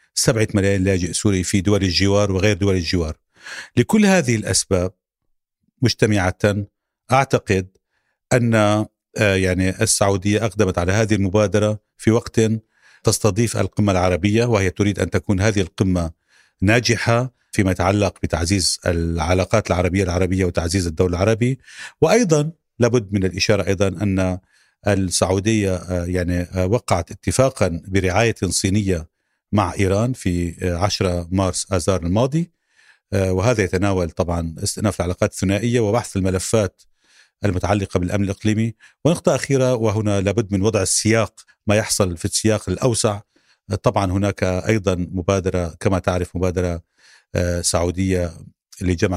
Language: Arabic